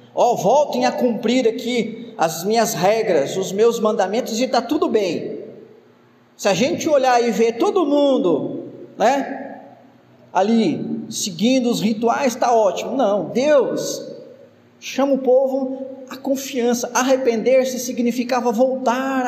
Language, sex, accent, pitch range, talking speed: Portuguese, male, Brazilian, 230-285 Hz, 125 wpm